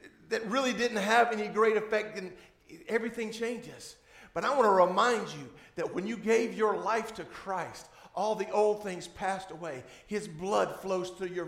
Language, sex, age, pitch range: English, male, 50-69, 180-235 Hz